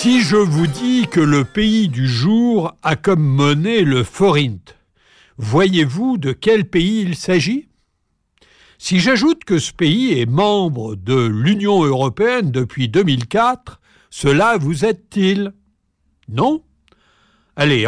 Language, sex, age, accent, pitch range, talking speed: French, male, 60-79, French, 135-205 Hz, 125 wpm